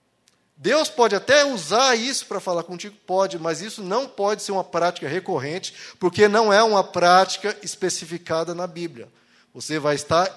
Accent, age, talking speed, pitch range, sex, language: Brazilian, 20-39, 160 wpm, 150-205 Hz, male, Portuguese